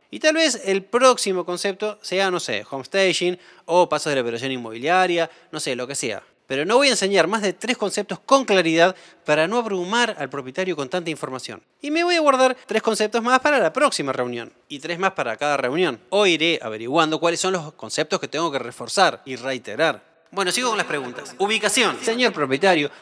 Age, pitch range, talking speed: 20-39, 140-205 Hz, 205 wpm